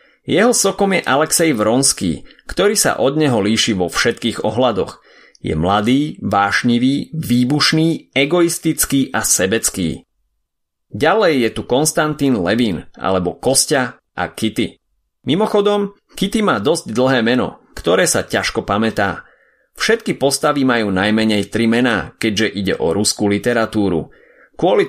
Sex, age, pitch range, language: male, 30-49, 100-145 Hz, Slovak